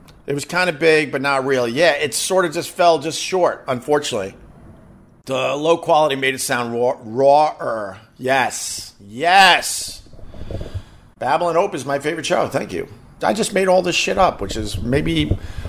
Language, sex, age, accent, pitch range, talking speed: English, male, 50-69, American, 135-185 Hz, 170 wpm